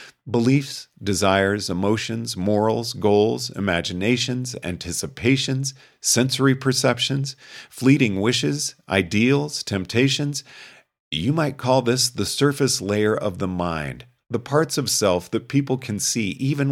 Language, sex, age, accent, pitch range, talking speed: English, male, 40-59, American, 100-130 Hz, 115 wpm